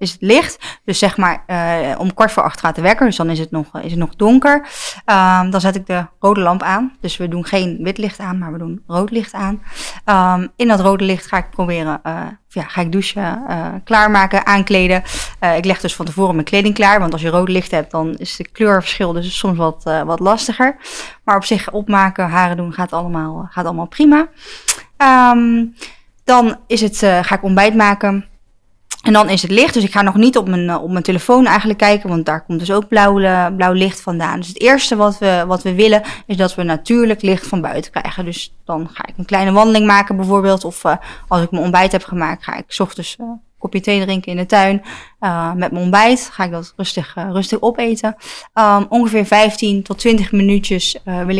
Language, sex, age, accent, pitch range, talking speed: Dutch, female, 20-39, Dutch, 180-210 Hz, 220 wpm